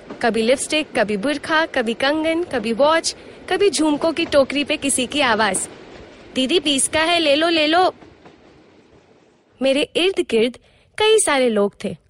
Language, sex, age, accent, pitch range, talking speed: Hindi, female, 20-39, native, 255-365 Hz, 155 wpm